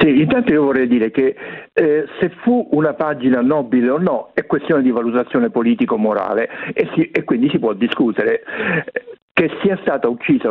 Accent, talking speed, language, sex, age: native, 165 wpm, Italian, male, 60-79